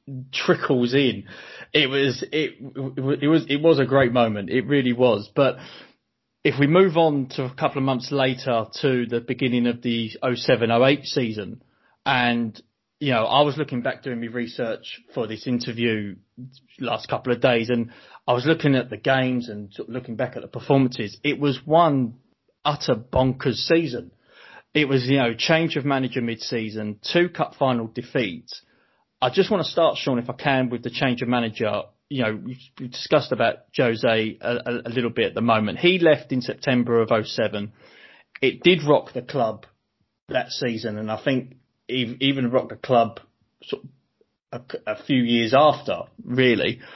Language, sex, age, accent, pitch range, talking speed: English, male, 30-49, British, 115-140 Hz, 185 wpm